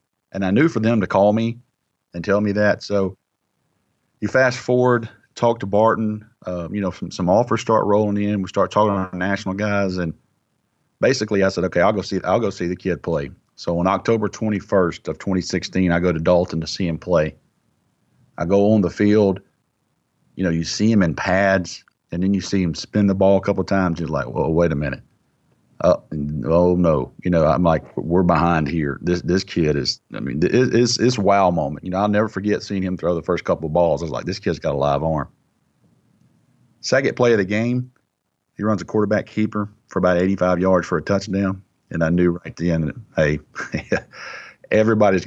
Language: English